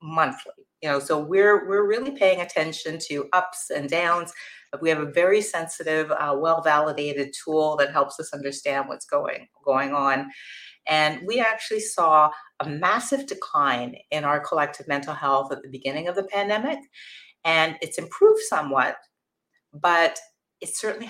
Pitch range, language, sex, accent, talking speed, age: 150-205 Hz, English, female, American, 155 wpm, 30-49